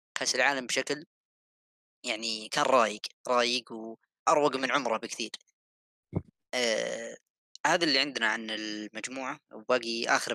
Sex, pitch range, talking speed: female, 105-130 Hz, 110 wpm